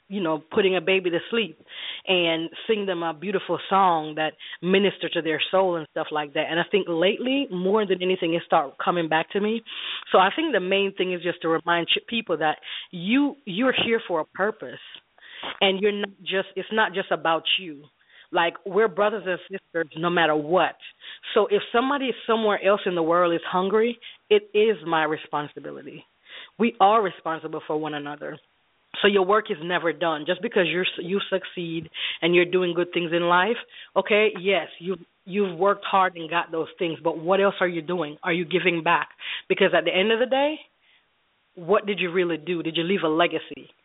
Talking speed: 200 wpm